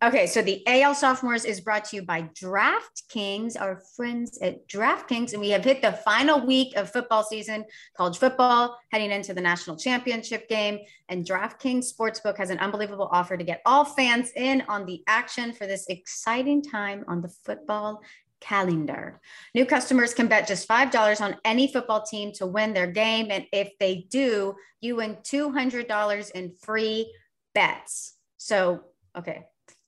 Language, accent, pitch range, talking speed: English, American, 190-240 Hz, 165 wpm